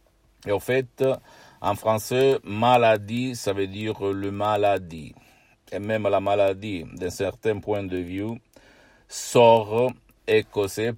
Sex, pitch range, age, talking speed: male, 95-115 Hz, 50-69, 150 wpm